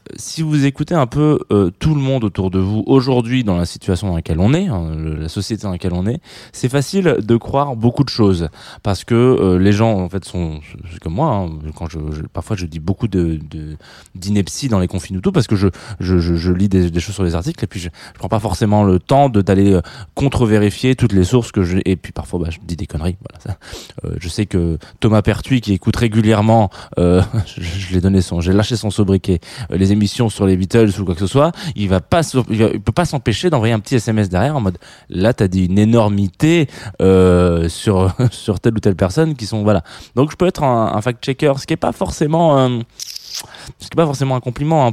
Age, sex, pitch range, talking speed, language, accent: 20-39, male, 95-125 Hz, 240 wpm, French, French